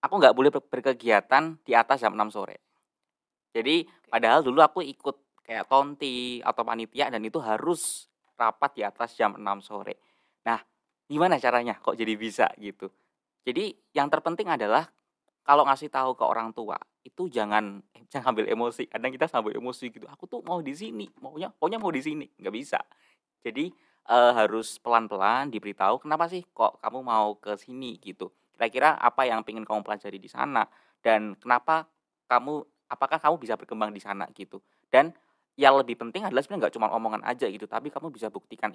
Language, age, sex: Indonesian, 20-39, male